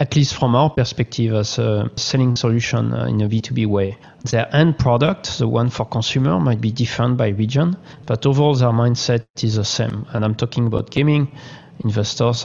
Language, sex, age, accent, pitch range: Chinese, male, 40-59, French, 115-135 Hz